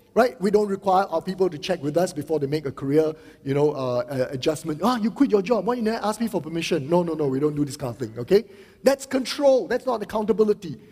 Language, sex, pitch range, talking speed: English, male, 155-220 Hz, 265 wpm